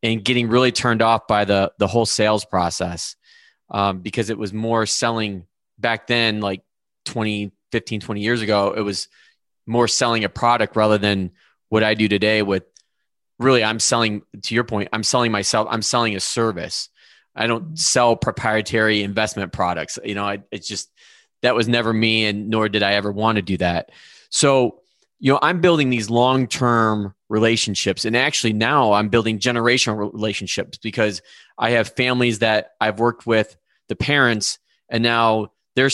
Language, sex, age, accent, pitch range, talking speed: English, male, 20-39, American, 105-120 Hz, 170 wpm